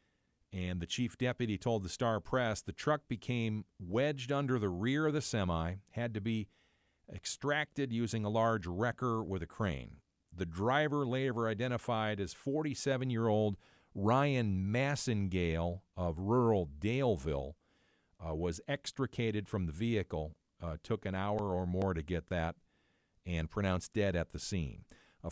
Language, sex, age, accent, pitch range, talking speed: English, male, 50-69, American, 90-120 Hz, 145 wpm